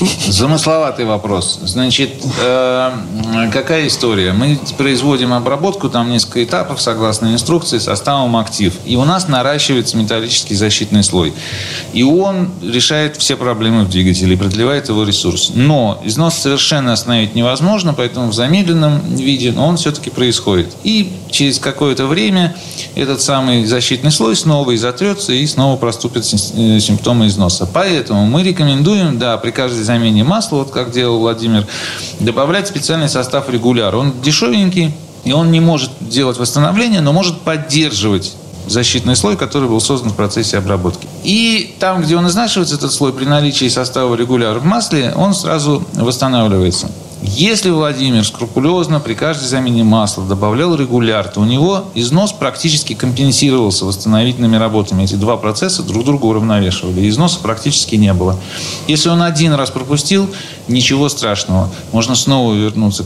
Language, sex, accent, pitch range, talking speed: Russian, male, native, 110-150 Hz, 145 wpm